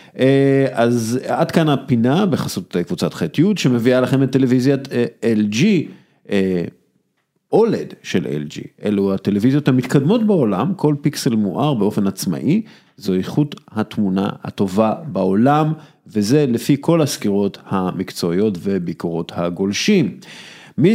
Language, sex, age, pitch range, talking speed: Hebrew, male, 50-69, 105-150 Hz, 105 wpm